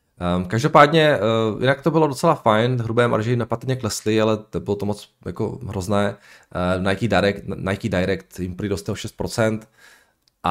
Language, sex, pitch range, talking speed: Czech, male, 95-120 Hz, 150 wpm